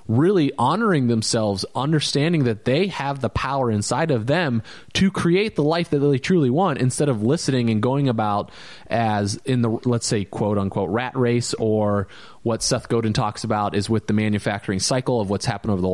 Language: English